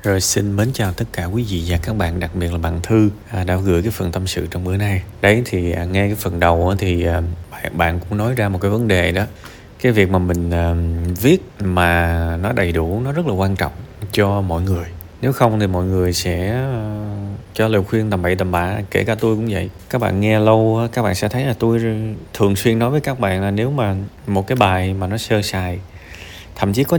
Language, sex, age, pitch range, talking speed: Vietnamese, male, 20-39, 95-120 Hz, 235 wpm